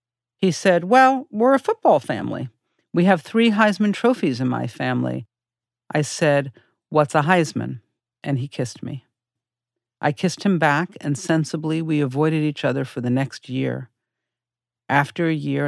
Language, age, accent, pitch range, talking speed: English, 50-69, American, 120-150 Hz, 155 wpm